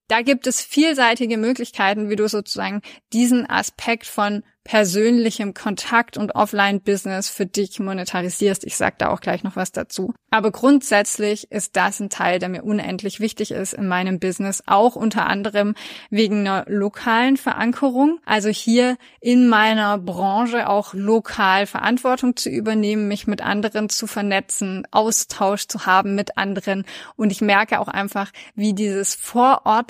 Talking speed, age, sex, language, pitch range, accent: 150 wpm, 20-39, female, German, 200-235 Hz, German